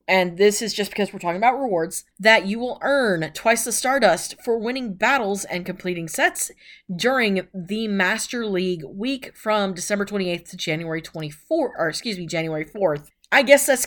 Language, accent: English, American